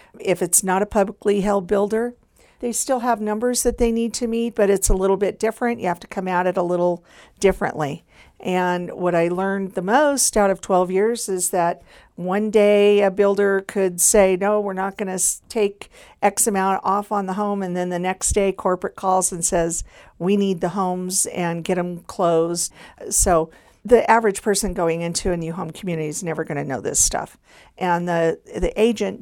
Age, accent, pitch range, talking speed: 50-69, American, 165-200 Hz, 205 wpm